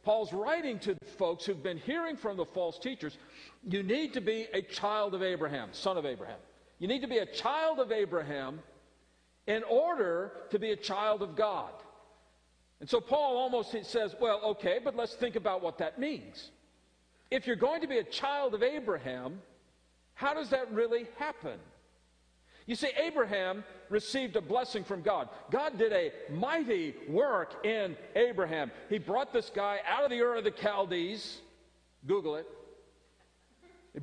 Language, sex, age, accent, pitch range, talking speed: English, male, 50-69, American, 205-275 Hz, 170 wpm